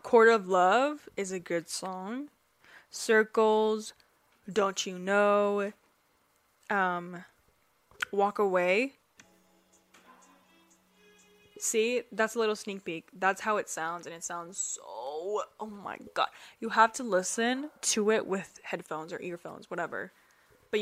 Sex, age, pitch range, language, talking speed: female, 10-29, 185-225 Hz, English, 125 wpm